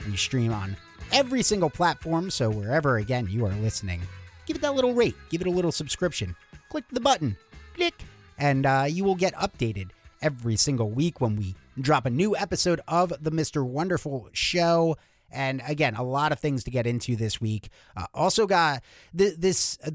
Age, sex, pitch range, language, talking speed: 30-49, male, 115-150 Hz, English, 185 wpm